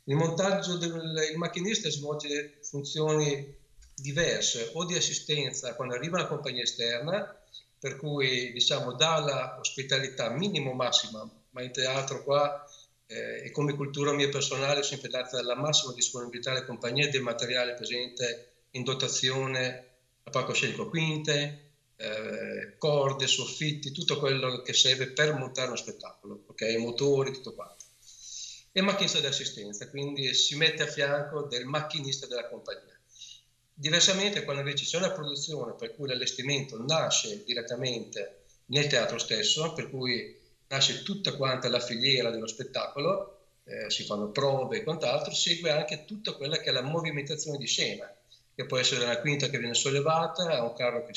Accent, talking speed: native, 150 wpm